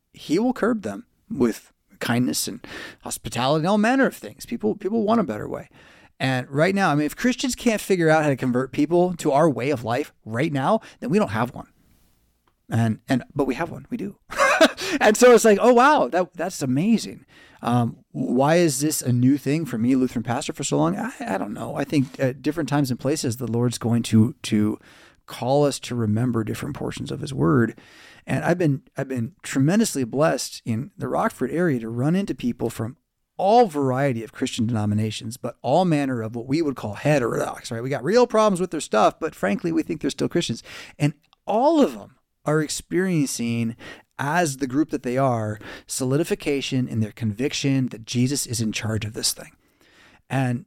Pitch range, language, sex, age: 120-170 Hz, English, male, 30-49